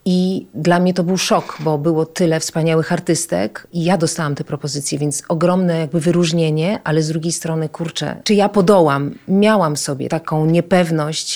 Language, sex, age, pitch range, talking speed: Polish, female, 30-49, 155-185 Hz, 170 wpm